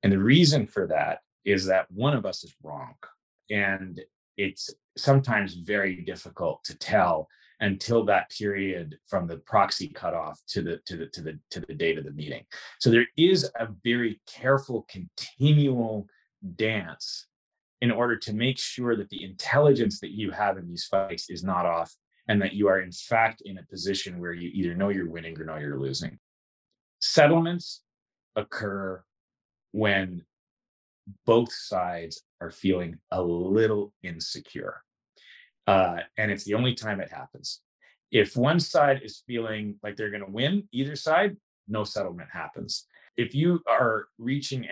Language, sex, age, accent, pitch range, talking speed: English, male, 30-49, American, 95-130 Hz, 160 wpm